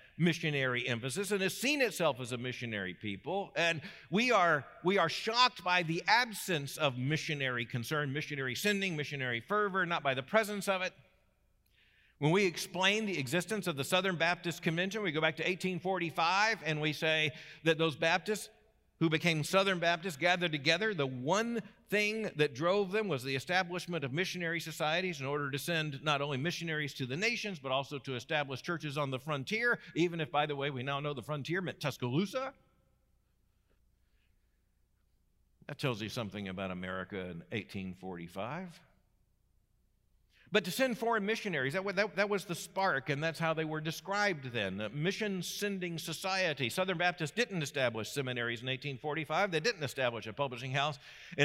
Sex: male